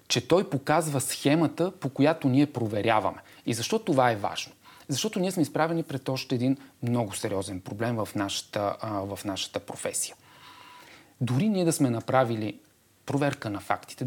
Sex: male